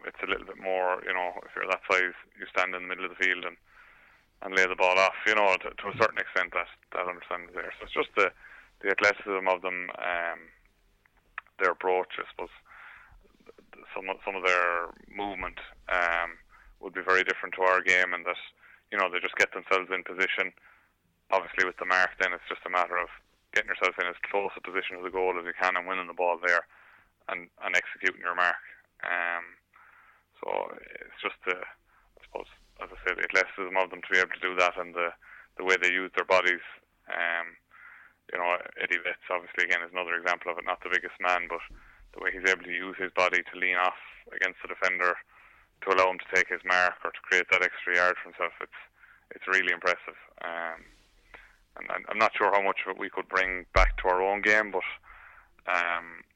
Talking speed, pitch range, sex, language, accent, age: 220 wpm, 90-95 Hz, male, English, Irish, 20-39